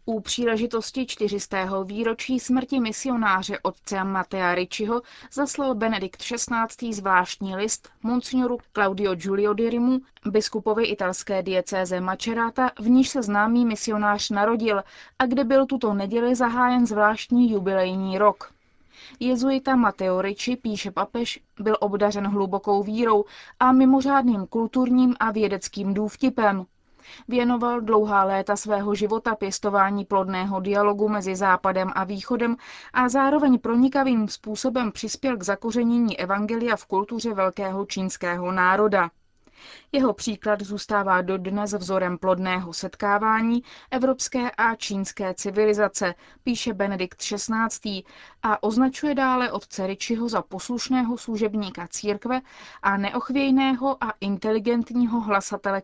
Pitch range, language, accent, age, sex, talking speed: 195-240 Hz, Czech, native, 20-39, female, 110 wpm